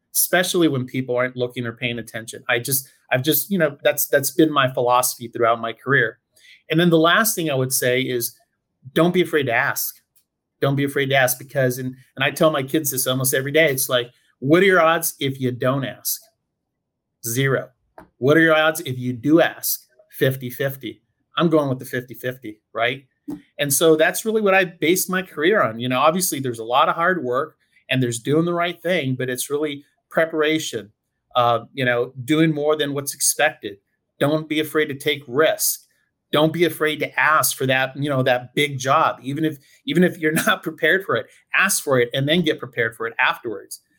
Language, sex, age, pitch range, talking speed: English, male, 40-59, 130-160 Hz, 205 wpm